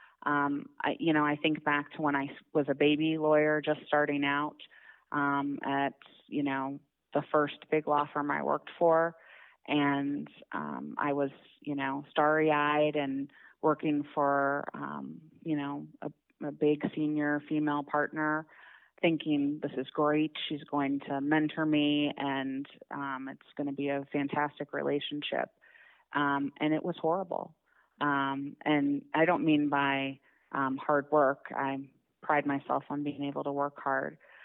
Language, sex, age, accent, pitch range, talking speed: English, female, 30-49, American, 140-150 Hz, 155 wpm